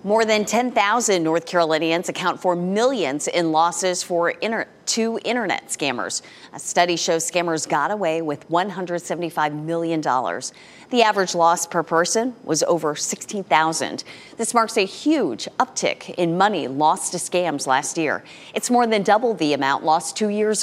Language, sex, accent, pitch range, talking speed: English, female, American, 165-220 Hz, 150 wpm